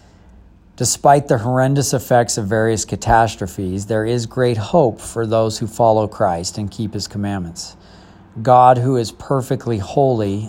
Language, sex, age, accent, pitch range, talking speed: English, male, 40-59, American, 105-125 Hz, 145 wpm